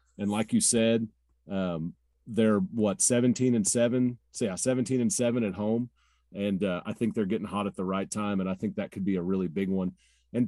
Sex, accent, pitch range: male, American, 100-125 Hz